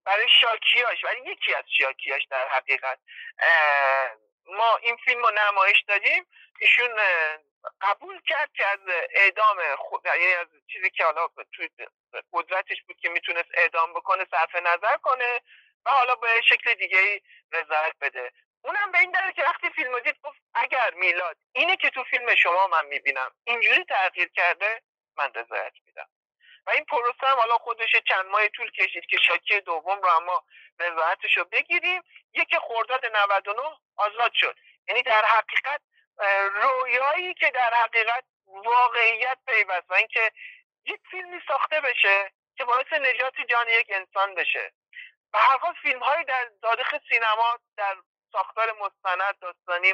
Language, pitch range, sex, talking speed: Persian, 195-265 Hz, male, 145 wpm